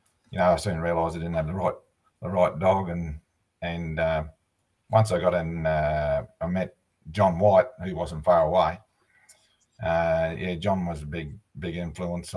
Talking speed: 180 wpm